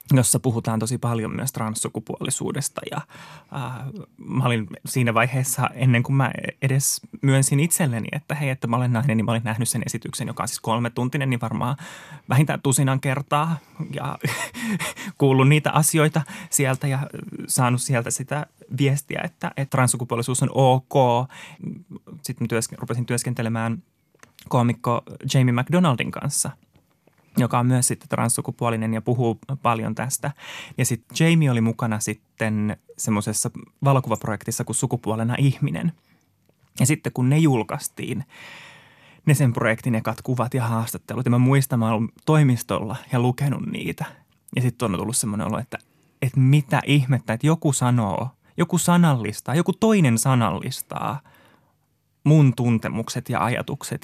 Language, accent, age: Finnish, native, 20-39